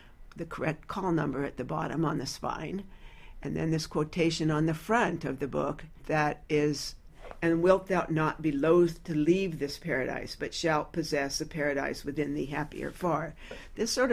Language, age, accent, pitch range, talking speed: English, 60-79, American, 145-170 Hz, 185 wpm